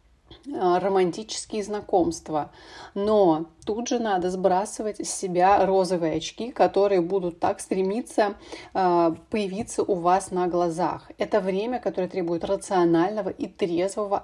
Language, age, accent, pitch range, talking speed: Russian, 30-49, native, 170-205 Hz, 115 wpm